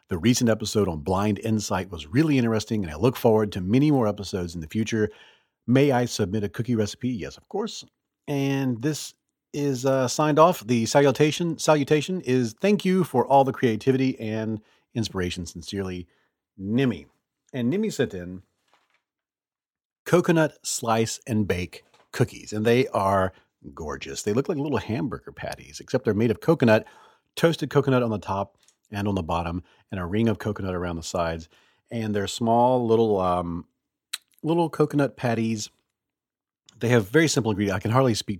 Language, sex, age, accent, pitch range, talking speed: English, male, 40-59, American, 95-130 Hz, 165 wpm